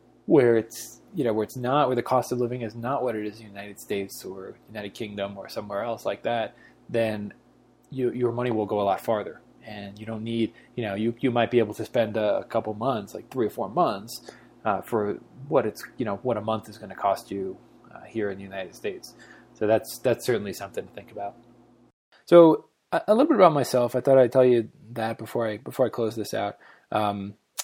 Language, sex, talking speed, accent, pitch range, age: English, male, 235 wpm, American, 110-130 Hz, 20-39